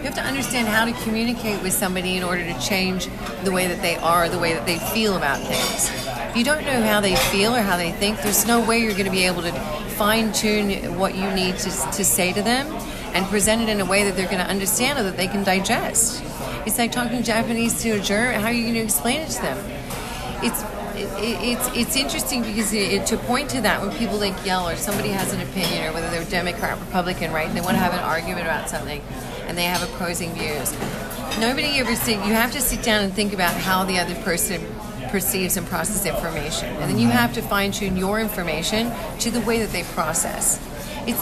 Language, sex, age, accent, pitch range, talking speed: English, female, 40-59, American, 180-220 Hz, 235 wpm